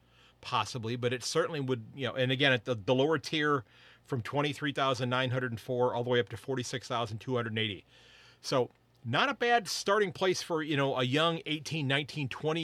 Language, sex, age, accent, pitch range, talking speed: English, male, 40-59, American, 120-145 Hz, 165 wpm